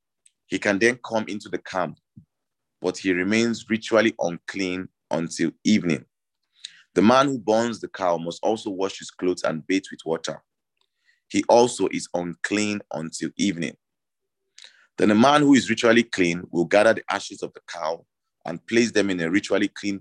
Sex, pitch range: male, 90-110 Hz